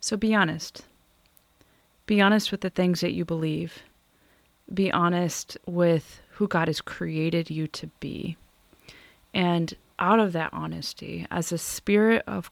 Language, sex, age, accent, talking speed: English, female, 20-39, American, 145 wpm